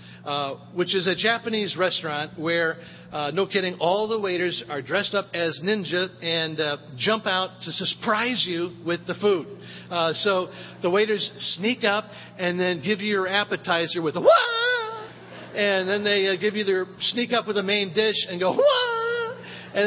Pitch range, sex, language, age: 165-210 Hz, male, English, 50-69